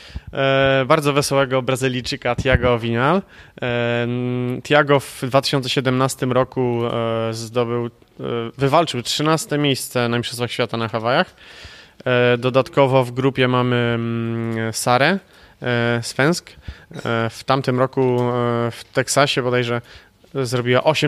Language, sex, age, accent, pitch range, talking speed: Polish, male, 20-39, native, 120-140 Hz, 90 wpm